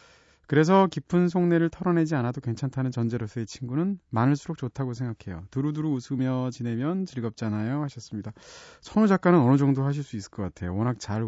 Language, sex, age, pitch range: Korean, male, 30-49, 115-160 Hz